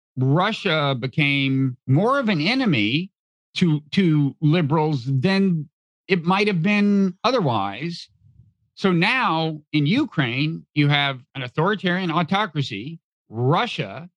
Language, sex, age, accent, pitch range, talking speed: English, male, 50-69, American, 140-185 Hz, 105 wpm